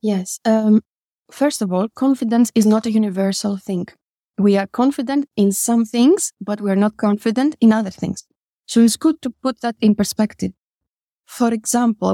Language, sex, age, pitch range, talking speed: English, female, 20-39, 200-240 Hz, 170 wpm